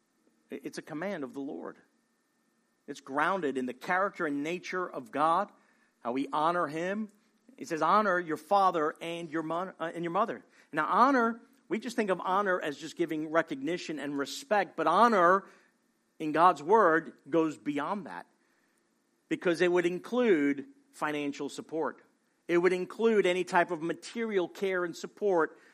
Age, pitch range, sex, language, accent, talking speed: 50-69, 170-235 Hz, male, English, American, 155 wpm